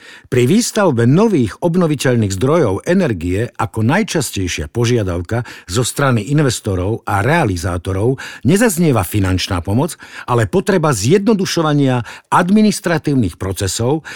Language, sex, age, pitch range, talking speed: Slovak, male, 60-79, 110-155 Hz, 95 wpm